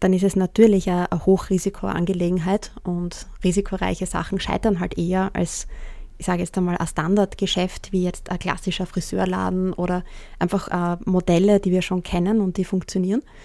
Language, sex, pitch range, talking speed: English, female, 185-210 Hz, 155 wpm